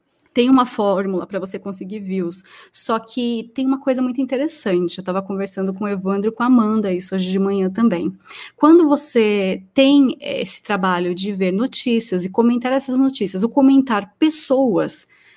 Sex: female